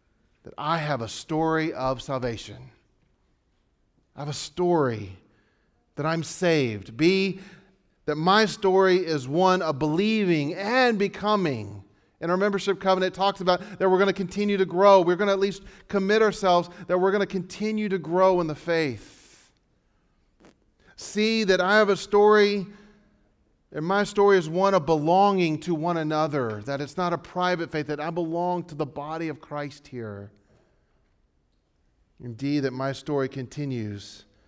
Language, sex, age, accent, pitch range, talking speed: English, male, 40-59, American, 135-185 Hz, 155 wpm